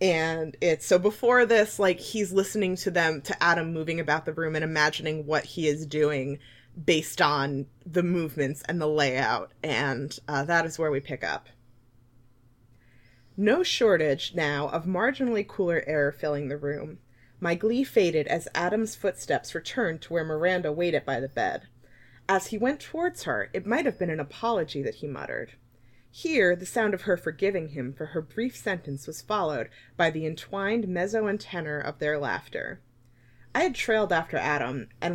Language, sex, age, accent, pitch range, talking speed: English, female, 20-39, American, 135-190 Hz, 175 wpm